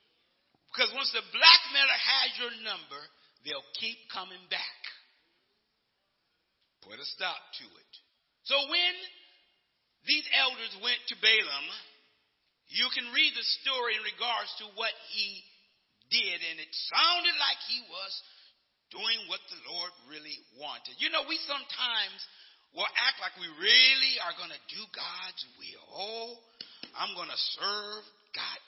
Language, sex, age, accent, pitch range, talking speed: English, male, 50-69, American, 190-280 Hz, 140 wpm